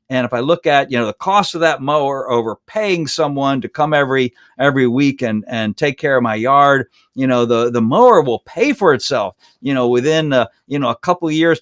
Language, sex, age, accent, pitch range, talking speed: English, male, 50-69, American, 120-150 Hz, 230 wpm